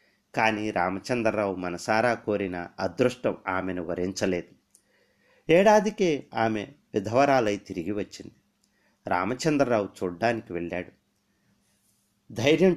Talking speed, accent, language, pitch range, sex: 75 wpm, native, Telugu, 100-140 Hz, male